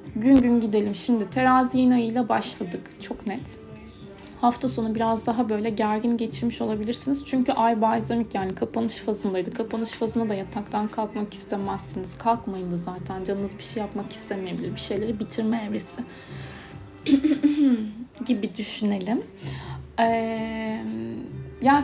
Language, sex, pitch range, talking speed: Turkish, female, 215-260 Hz, 125 wpm